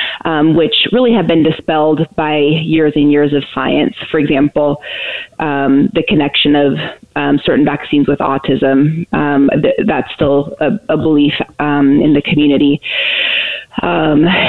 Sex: female